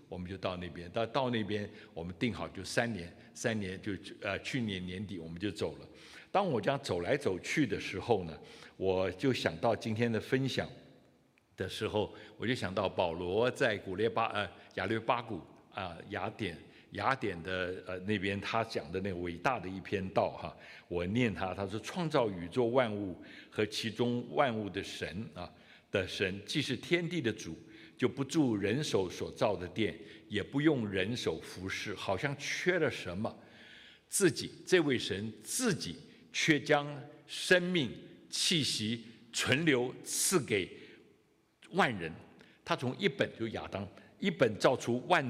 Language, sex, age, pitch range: Chinese, male, 60-79, 100-135 Hz